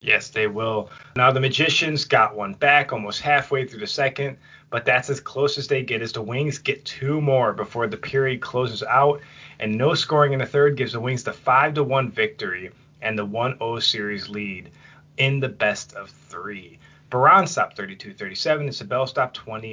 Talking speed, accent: 190 wpm, American